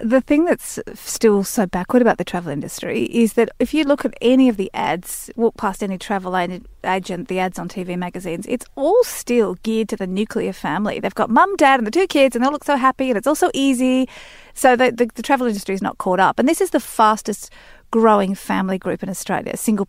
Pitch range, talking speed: 185-245 Hz, 230 wpm